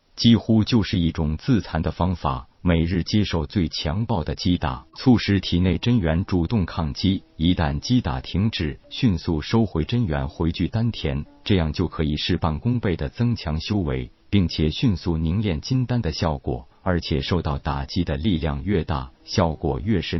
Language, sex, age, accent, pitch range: Chinese, male, 50-69, native, 75-100 Hz